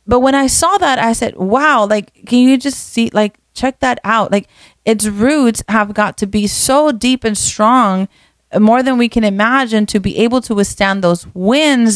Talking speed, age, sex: 200 wpm, 30-49, female